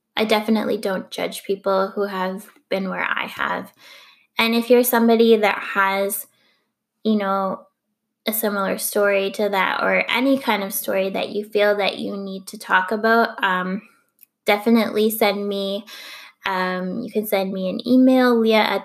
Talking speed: 160 wpm